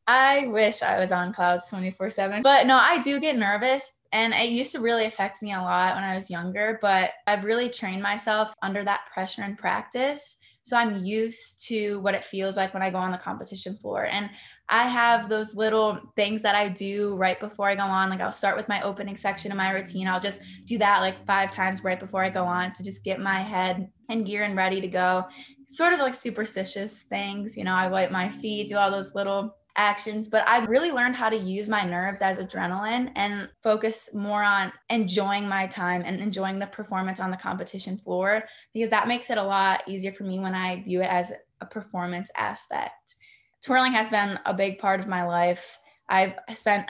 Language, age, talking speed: English, 20-39, 215 wpm